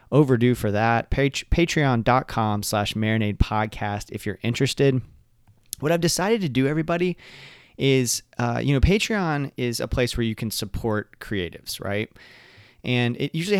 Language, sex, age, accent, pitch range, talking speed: English, male, 30-49, American, 105-130 Hz, 150 wpm